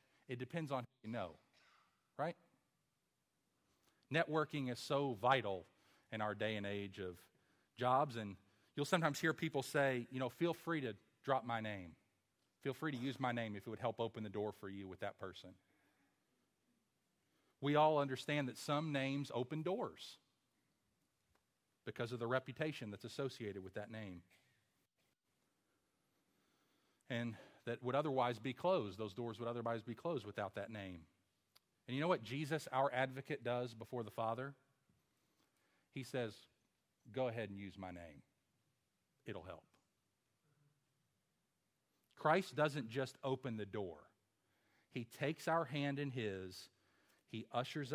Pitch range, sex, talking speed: 105-145 Hz, male, 145 wpm